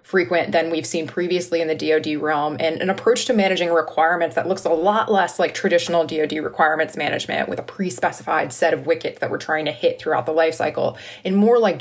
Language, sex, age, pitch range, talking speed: English, female, 20-39, 160-195 Hz, 220 wpm